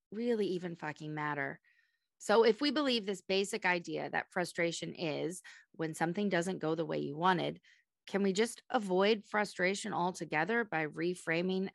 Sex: female